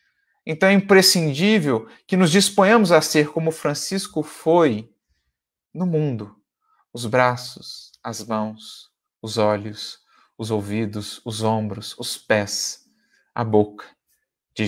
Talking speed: 115 wpm